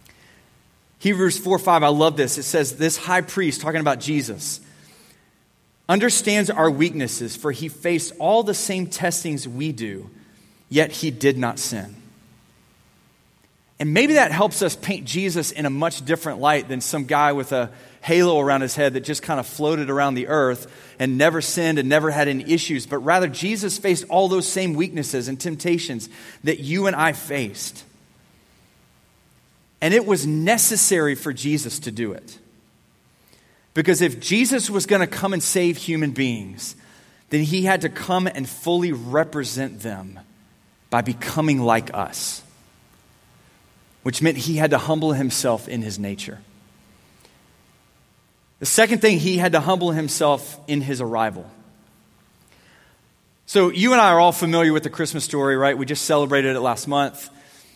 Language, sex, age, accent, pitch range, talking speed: English, male, 30-49, American, 130-175 Hz, 160 wpm